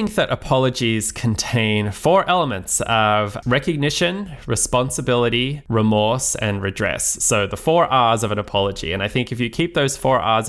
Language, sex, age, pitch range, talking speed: English, male, 20-39, 105-125 Hz, 155 wpm